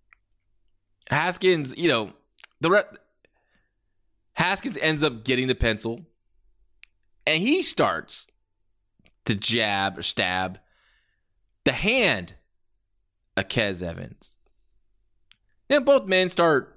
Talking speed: 95 wpm